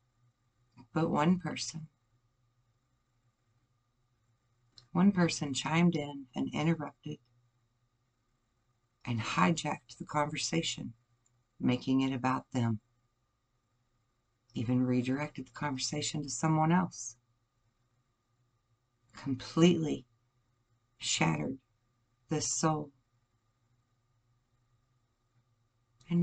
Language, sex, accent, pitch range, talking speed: English, female, American, 120-135 Hz, 65 wpm